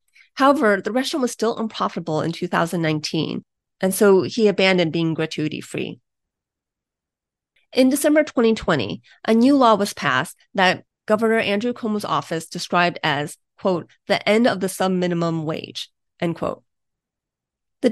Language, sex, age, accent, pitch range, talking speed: English, female, 30-49, American, 170-230 Hz, 130 wpm